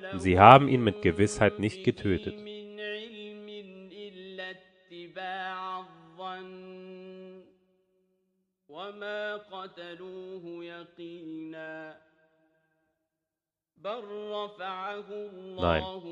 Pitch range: 125-190 Hz